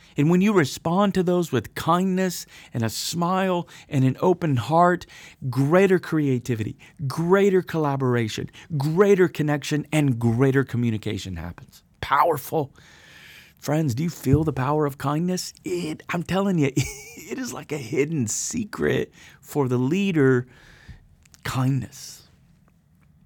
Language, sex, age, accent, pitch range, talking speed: English, male, 40-59, American, 115-155 Hz, 125 wpm